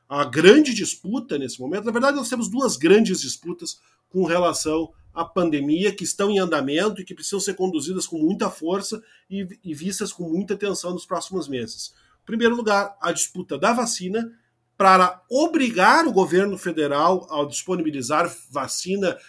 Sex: male